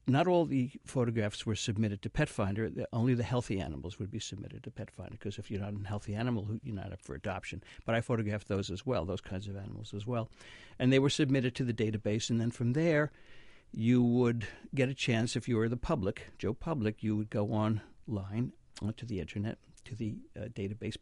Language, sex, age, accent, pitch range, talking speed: English, male, 60-79, American, 105-125 Hz, 215 wpm